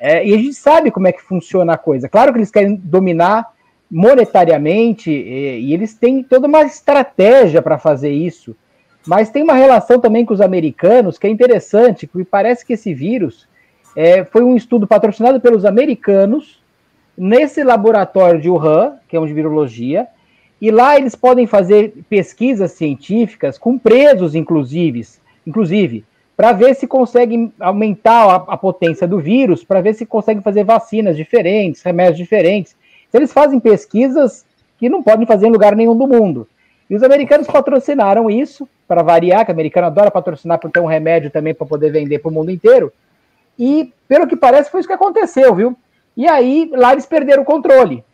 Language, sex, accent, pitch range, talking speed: Portuguese, male, Brazilian, 175-250 Hz, 175 wpm